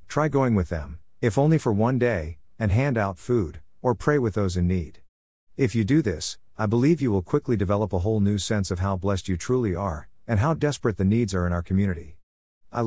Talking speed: 230 wpm